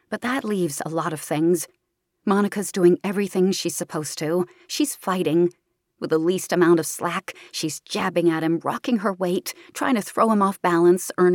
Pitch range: 170-215 Hz